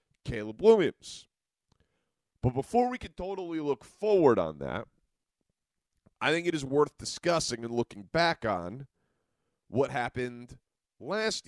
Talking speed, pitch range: 125 wpm, 120-160 Hz